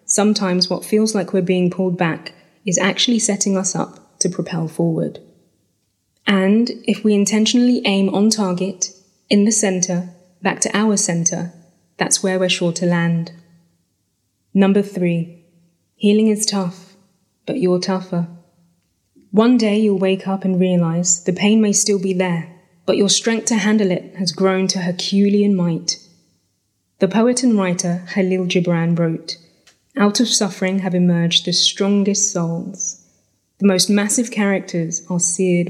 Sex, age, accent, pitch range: female, 20-39, British, 170-200 Hz